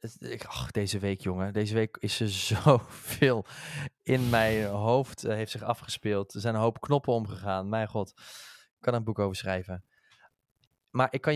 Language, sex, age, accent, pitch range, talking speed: Dutch, male, 20-39, Dutch, 115-145 Hz, 175 wpm